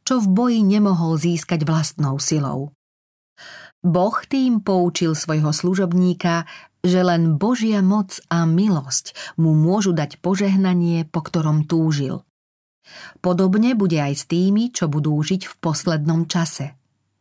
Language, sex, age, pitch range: Slovak, female, 40-59, 150-190 Hz